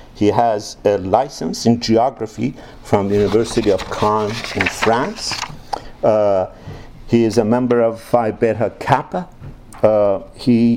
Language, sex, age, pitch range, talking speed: English, male, 50-69, 110-125 Hz, 135 wpm